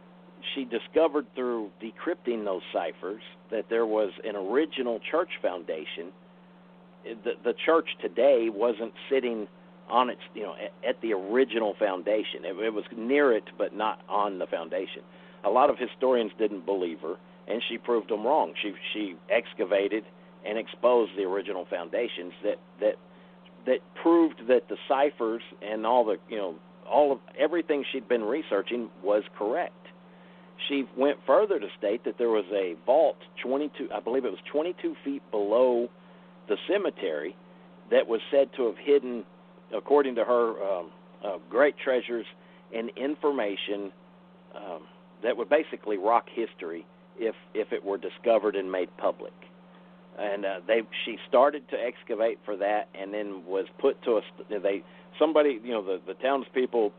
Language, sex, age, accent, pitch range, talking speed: English, male, 50-69, American, 105-155 Hz, 155 wpm